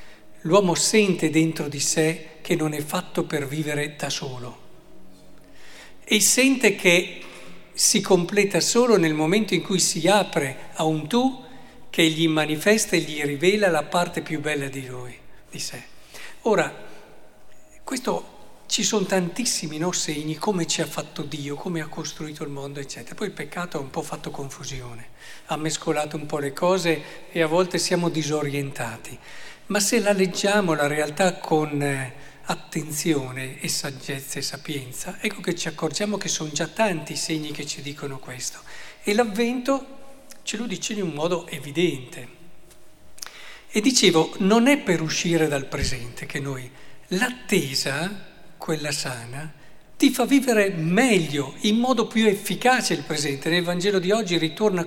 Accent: native